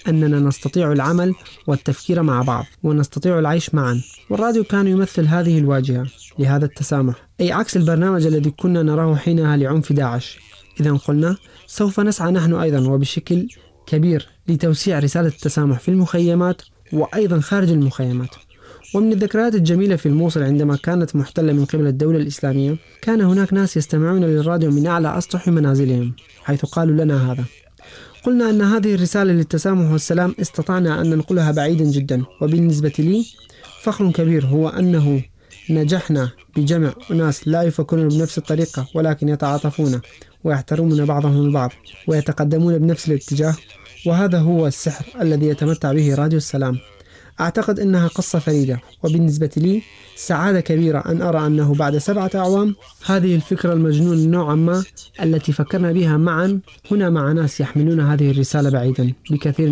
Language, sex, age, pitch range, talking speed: Arabic, male, 20-39, 145-175 Hz, 140 wpm